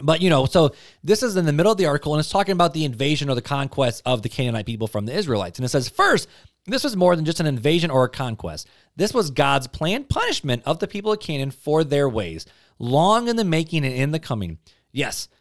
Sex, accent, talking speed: male, American, 250 wpm